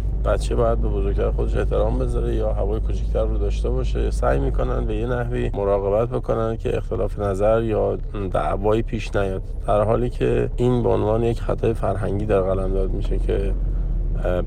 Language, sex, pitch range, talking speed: Persian, male, 95-115 Hz, 165 wpm